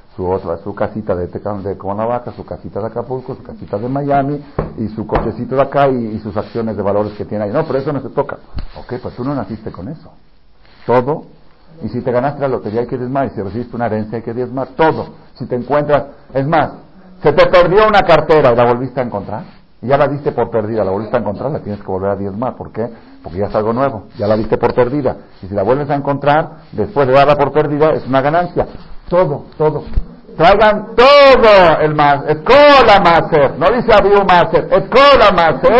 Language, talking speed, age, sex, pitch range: Spanish, 220 wpm, 50-69, male, 100-140 Hz